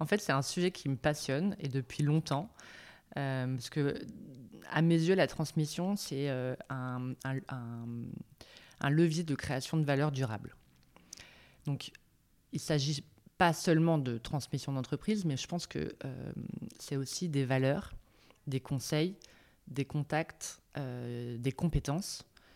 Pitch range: 130-160 Hz